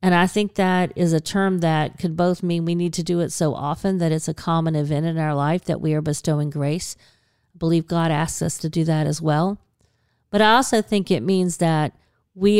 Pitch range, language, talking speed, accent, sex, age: 150-190 Hz, English, 235 wpm, American, female, 40-59